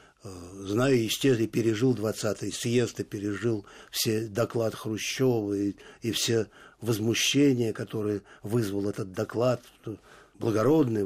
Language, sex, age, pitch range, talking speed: Russian, male, 60-79, 105-135 Hz, 105 wpm